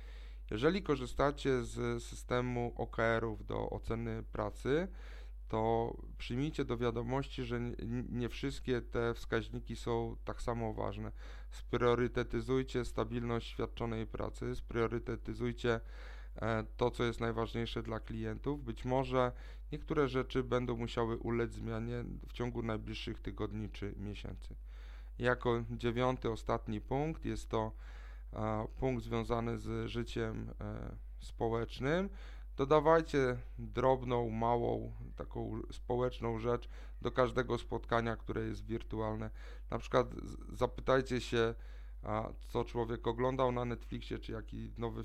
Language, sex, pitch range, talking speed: Polish, male, 110-125 Hz, 110 wpm